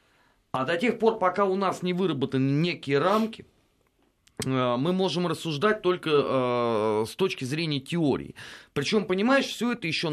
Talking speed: 140 wpm